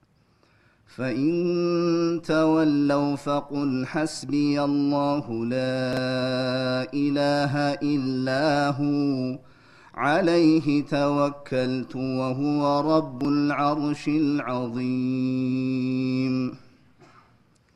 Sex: male